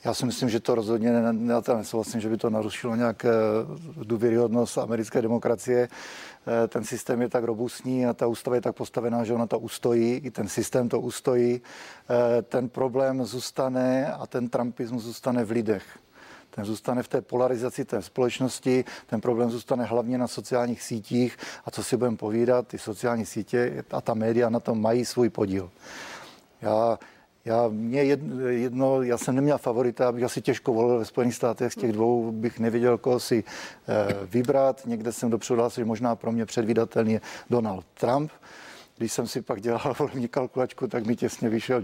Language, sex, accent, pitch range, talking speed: Czech, male, native, 115-130 Hz, 170 wpm